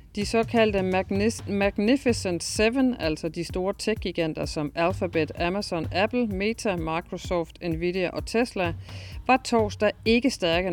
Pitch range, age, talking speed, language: 170-220 Hz, 40-59, 125 wpm, Danish